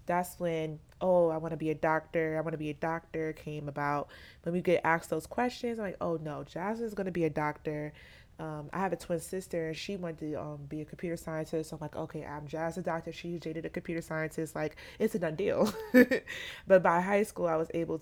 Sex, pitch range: female, 155-185 Hz